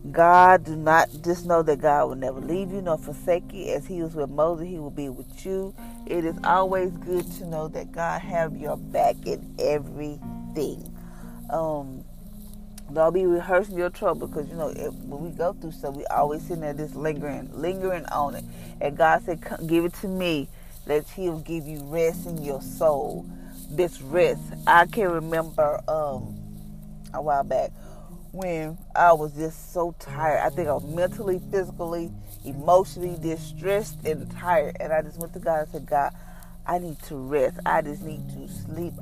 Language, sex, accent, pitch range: English, female, American, 140-180 Hz